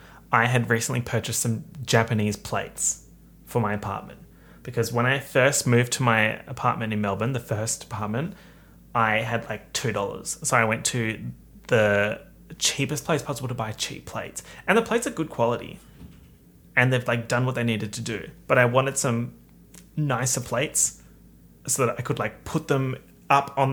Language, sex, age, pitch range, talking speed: English, male, 30-49, 110-140 Hz, 175 wpm